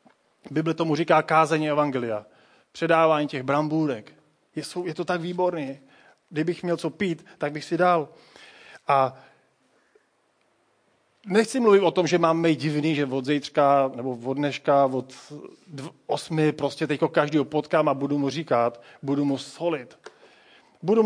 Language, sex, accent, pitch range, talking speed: Czech, male, native, 145-180 Hz, 140 wpm